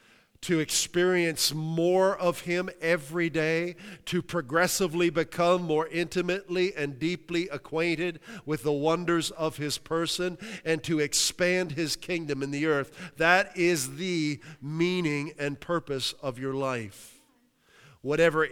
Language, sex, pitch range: English, male, 145-175 Hz